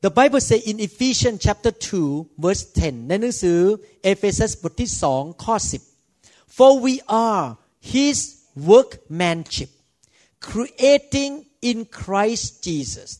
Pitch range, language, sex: 170-230 Hz, Thai, male